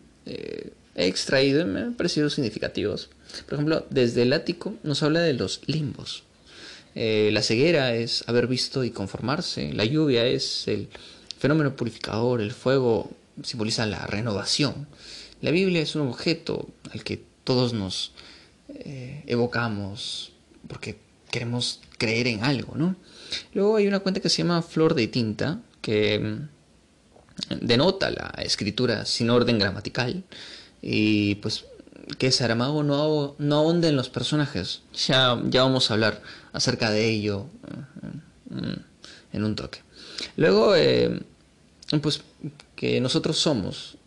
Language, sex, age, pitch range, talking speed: Spanish, male, 20-39, 110-150 Hz, 135 wpm